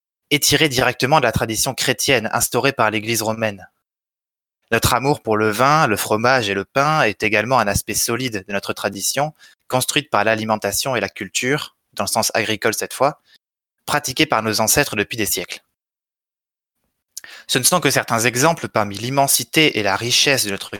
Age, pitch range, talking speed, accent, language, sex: 20-39, 110-140 Hz, 175 wpm, French, French, male